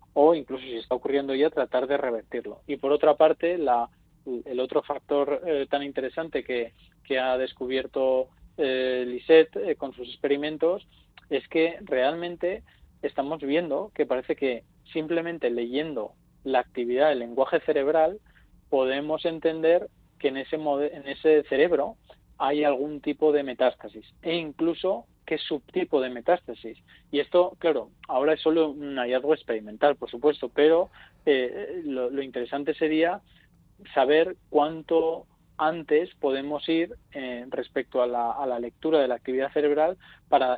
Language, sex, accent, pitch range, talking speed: Spanish, male, Spanish, 130-160 Hz, 145 wpm